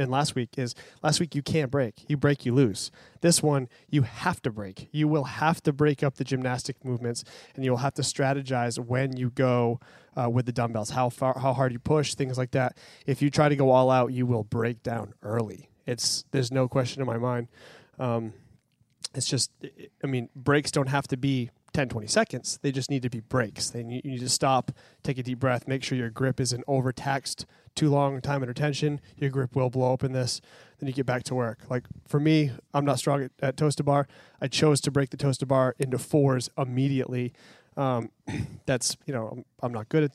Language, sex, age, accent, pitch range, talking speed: English, male, 20-39, American, 125-145 Hz, 220 wpm